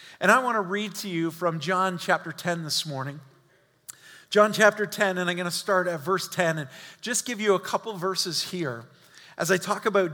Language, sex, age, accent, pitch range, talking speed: English, male, 40-59, American, 160-200 Hz, 215 wpm